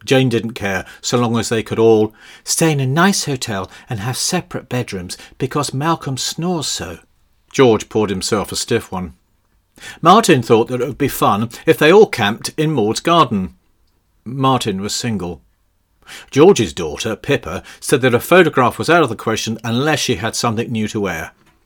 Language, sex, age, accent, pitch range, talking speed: English, male, 50-69, British, 100-135 Hz, 175 wpm